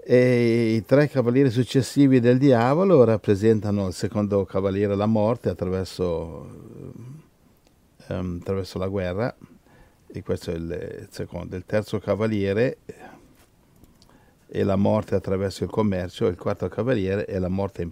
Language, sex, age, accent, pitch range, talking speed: Italian, male, 50-69, native, 95-120 Hz, 135 wpm